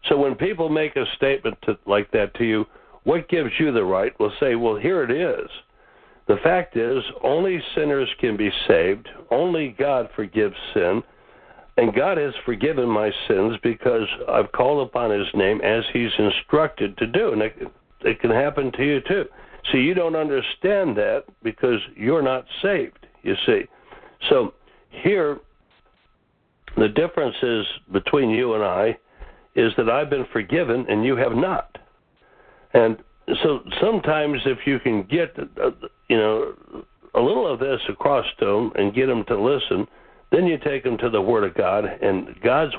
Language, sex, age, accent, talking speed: English, male, 60-79, American, 170 wpm